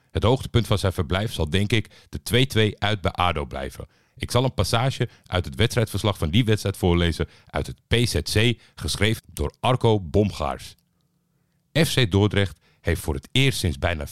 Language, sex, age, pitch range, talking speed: Dutch, male, 50-69, 80-110 Hz, 170 wpm